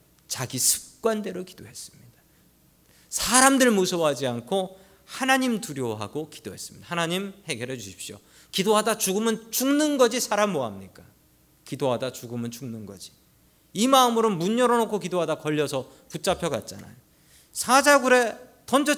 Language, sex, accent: Korean, male, native